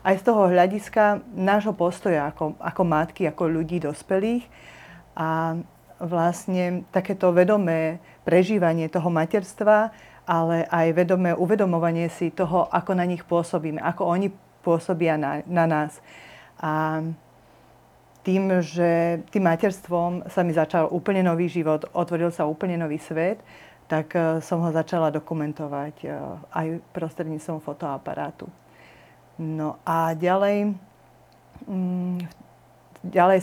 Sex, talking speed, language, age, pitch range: female, 115 wpm, Slovak, 30-49, 160-180 Hz